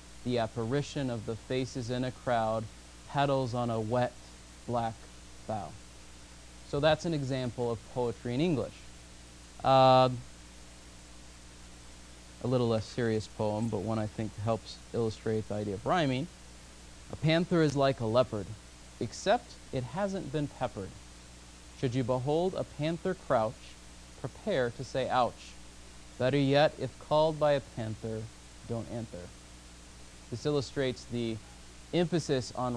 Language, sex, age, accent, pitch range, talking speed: English, male, 30-49, American, 85-130 Hz, 135 wpm